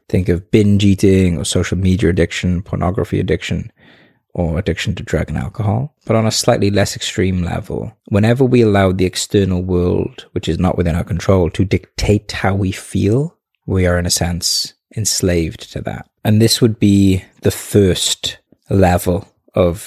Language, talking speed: English, 170 wpm